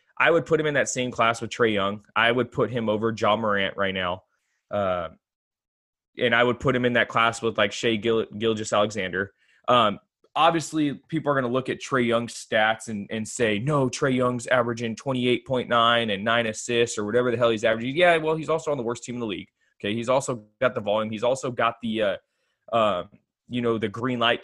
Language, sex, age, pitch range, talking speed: English, male, 20-39, 110-140 Hz, 220 wpm